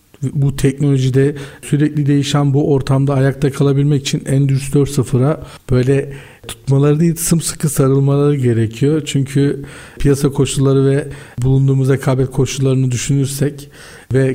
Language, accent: Turkish, native